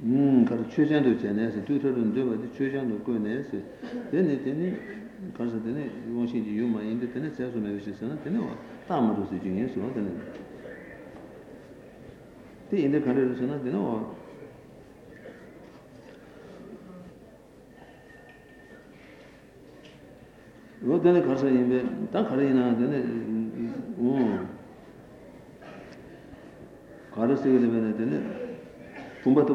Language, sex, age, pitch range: Italian, male, 60-79, 115-135 Hz